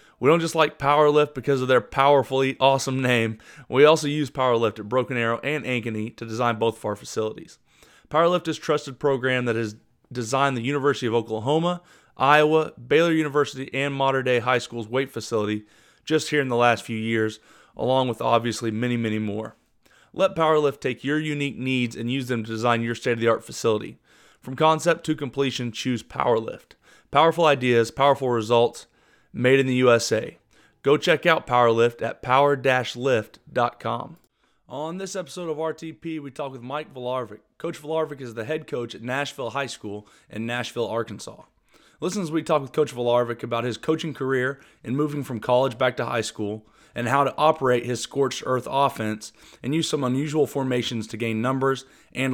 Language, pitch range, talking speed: English, 115-145 Hz, 175 wpm